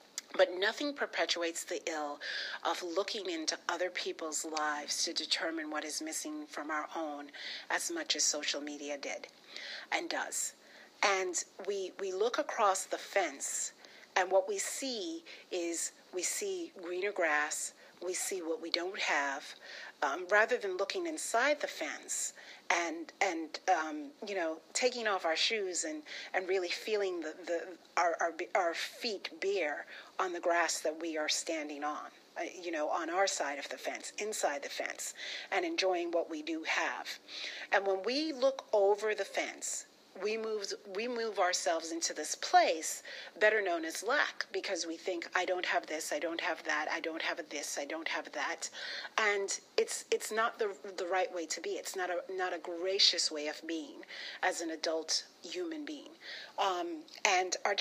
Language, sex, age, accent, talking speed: English, female, 40-59, American, 175 wpm